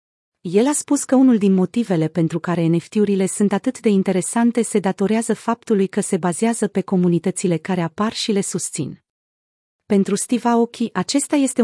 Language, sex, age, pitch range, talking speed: Romanian, female, 30-49, 175-225 Hz, 165 wpm